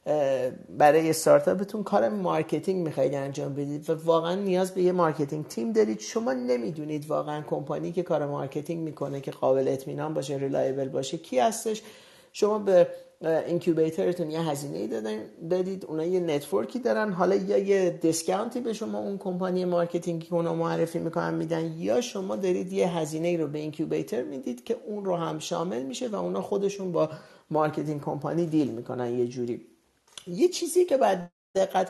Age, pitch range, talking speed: 40-59, 150-190 Hz, 160 wpm